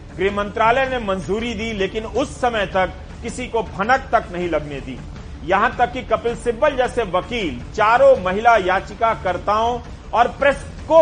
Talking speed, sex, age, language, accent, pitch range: 160 wpm, male, 40-59, Hindi, native, 170-235 Hz